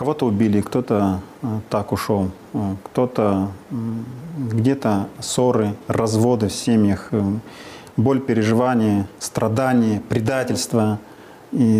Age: 40-59